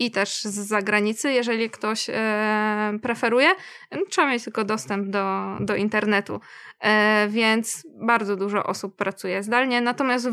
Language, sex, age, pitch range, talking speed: Polish, female, 20-39, 220-260 Hz, 120 wpm